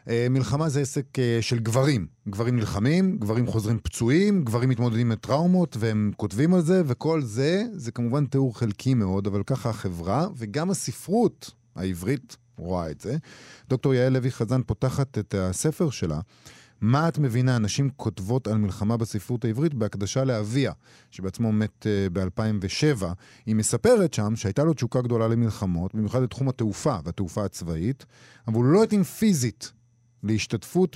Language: Hebrew